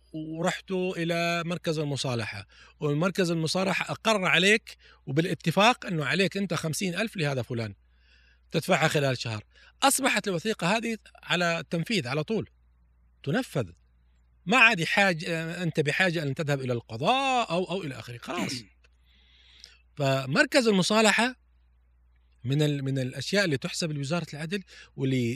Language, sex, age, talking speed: Arabic, male, 40-59, 120 wpm